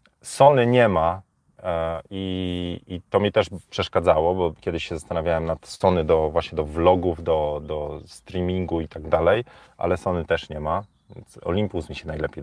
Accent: native